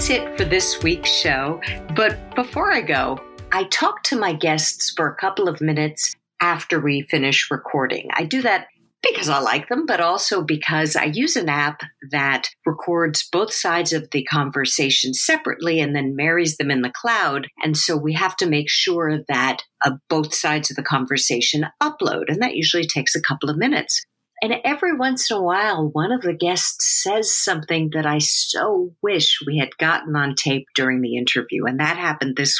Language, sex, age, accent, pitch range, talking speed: English, female, 50-69, American, 140-190 Hz, 190 wpm